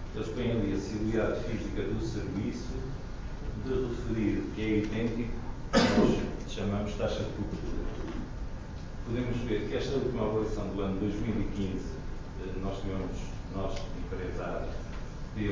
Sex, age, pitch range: male, 40-59, 95-115 Hz